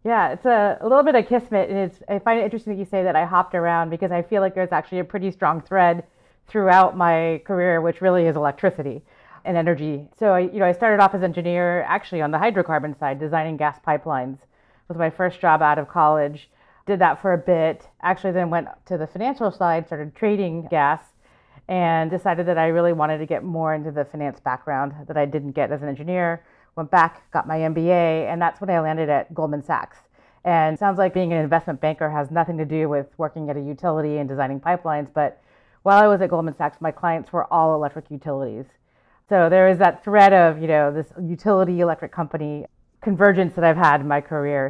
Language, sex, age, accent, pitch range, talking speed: English, female, 30-49, American, 155-185 Hz, 225 wpm